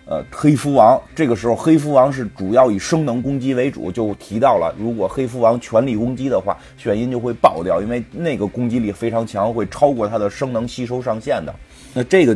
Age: 30-49